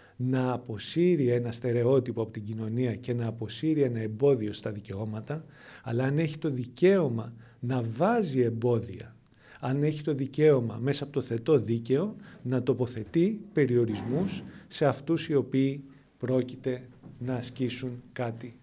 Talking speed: 135 wpm